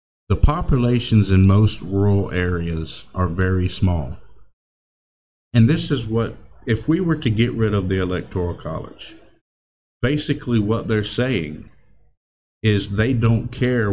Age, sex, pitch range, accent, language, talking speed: 50-69, male, 90-120 Hz, American, English, 135 wpm